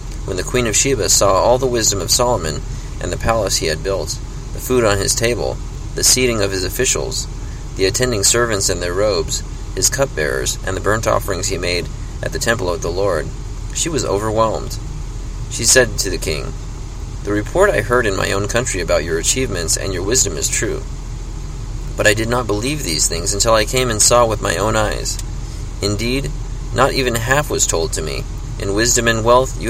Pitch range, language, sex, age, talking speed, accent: 100-125 Hz, English, male, 30-49, 200 wpm, American